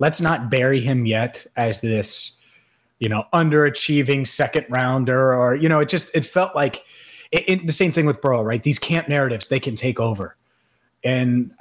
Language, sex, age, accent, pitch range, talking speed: English, male, 30-49, American, 115-140 Hz, 185 wpm